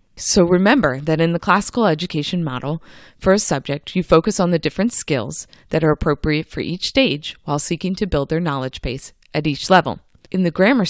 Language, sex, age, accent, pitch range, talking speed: English, female, 30-49, American, 150-200 Hz, 200 wpm